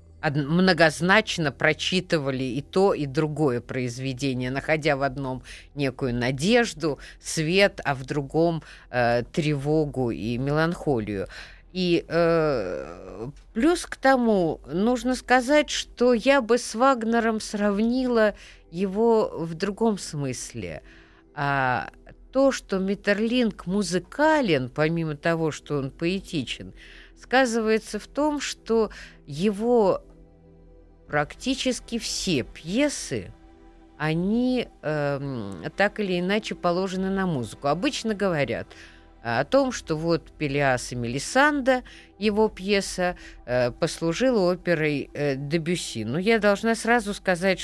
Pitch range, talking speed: 140-210 Hz, 105 wpm